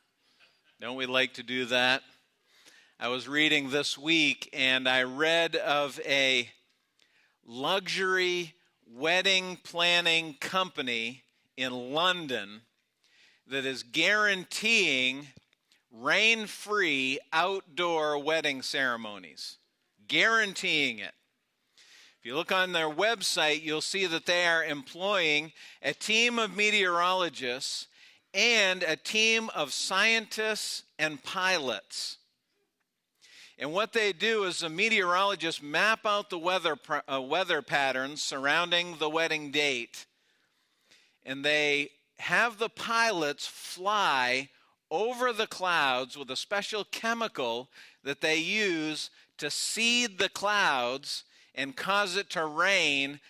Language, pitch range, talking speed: English, 140-195 Hz, 110 wpm